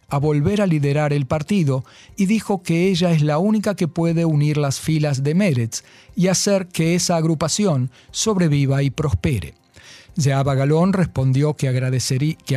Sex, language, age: male, Spanish, 50-69